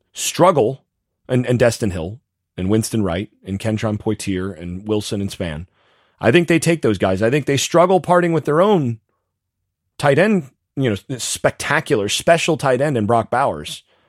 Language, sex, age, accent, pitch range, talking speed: English, male, 30-49, American, 100-160 Hz, 170 wpm